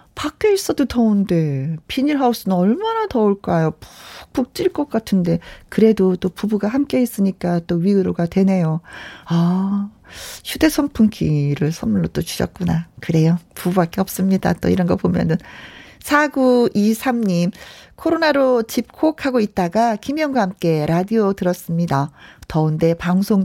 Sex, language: female, Korean